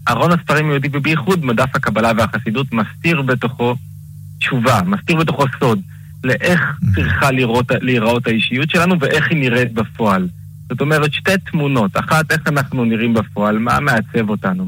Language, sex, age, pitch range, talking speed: Hebrew, male, 20-39, 120-150 Hz, 145 wpm